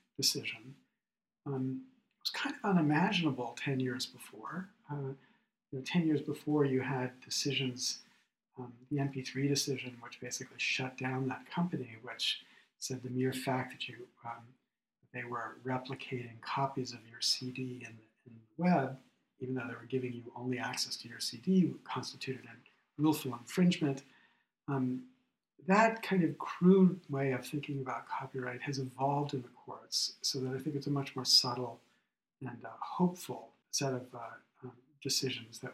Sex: male